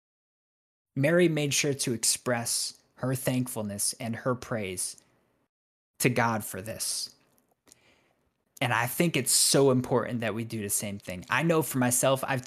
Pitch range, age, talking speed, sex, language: 125-155 Hz, 20-39, 150 wpm, male, English